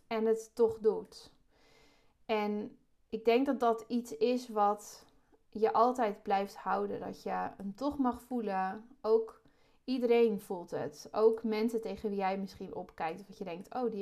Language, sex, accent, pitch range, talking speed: Dutch, female, Dutch, 205-240 Hz, 165 wpm